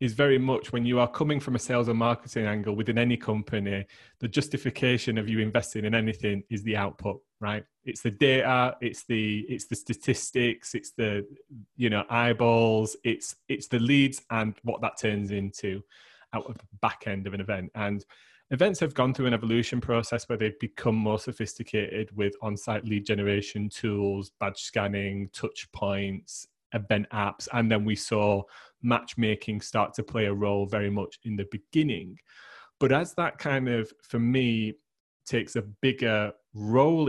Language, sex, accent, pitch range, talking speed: English, male, British, 105-120 Hz, 175 wpm